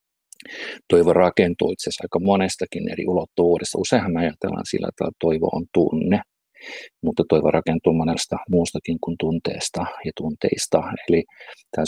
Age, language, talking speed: 50-69, Finnish, 130 wpm